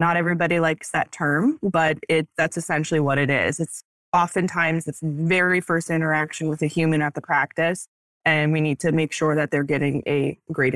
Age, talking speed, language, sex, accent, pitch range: 20-39, 195 wpm, English, female, American, 160-185 Hz